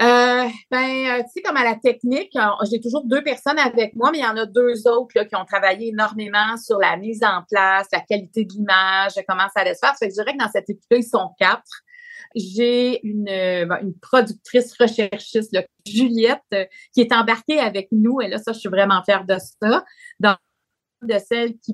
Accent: Canadian